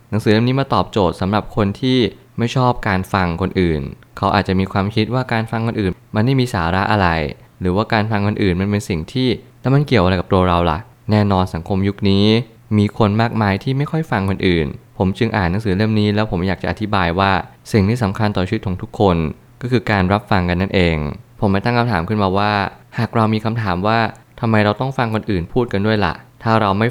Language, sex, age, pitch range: Thai, male, 20-39, 95-115 Hz